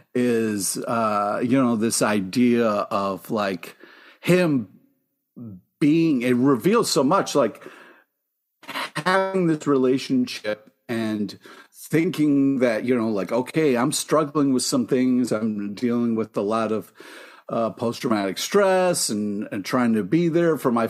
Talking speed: 135 wpm